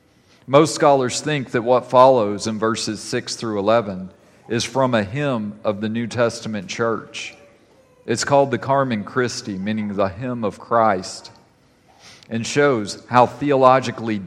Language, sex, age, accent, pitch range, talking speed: English, male, 40-59, American, 110-135 Hz, 145 wpm